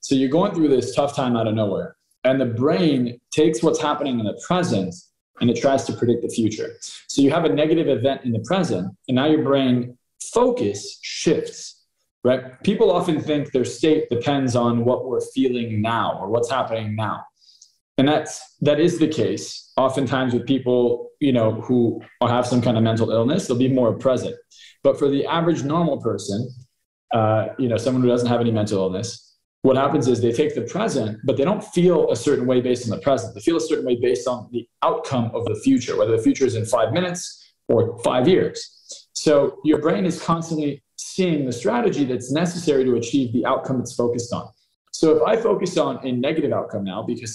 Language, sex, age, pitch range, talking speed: English, male, 20-39, 120-160 Hz, 205 wpm